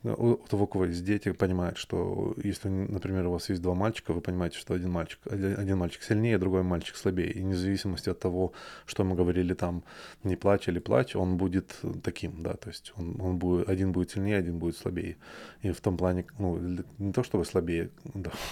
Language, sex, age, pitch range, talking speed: Russian, male, 20-39, 90-100 Hz, 205 wpm